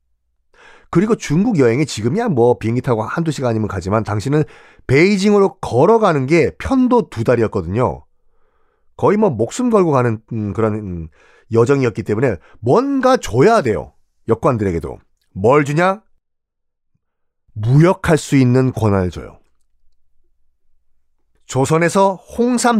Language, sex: Korean, male